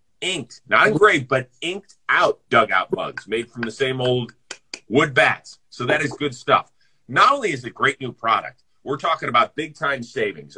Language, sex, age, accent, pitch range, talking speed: English, male, 40-59, American, 135-180 Hz, 185 wpm